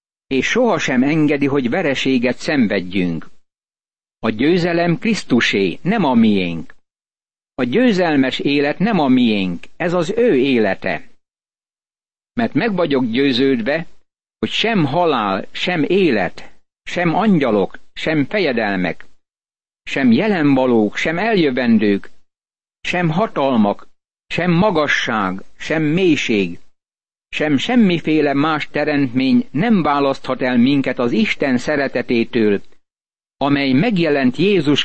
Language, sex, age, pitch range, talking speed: Hungarian, male, 60-79, 125-175 Hz, 100 wpm